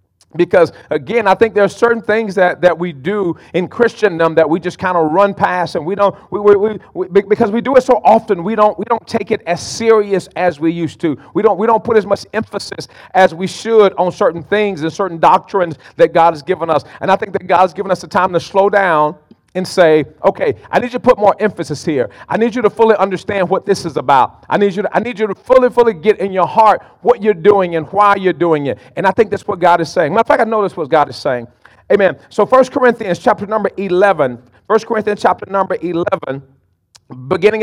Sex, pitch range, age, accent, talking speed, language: male, 170-220 Hz, 40-59, American, 240 wpm, English